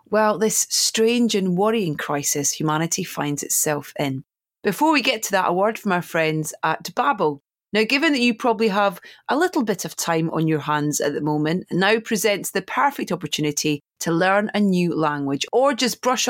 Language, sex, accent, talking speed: English, female, British, 190 wpm